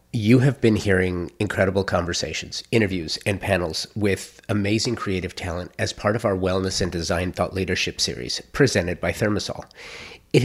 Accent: American